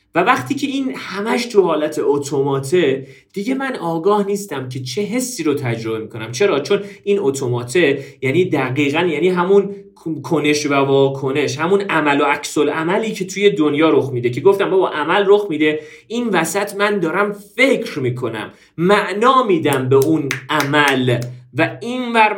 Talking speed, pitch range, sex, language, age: 155 wpm, 135-200 Hz, male, Persian, 40-59